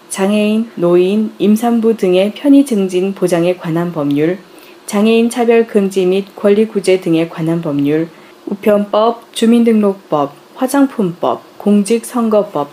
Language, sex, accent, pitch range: Korean, female, native, 175-225 Hz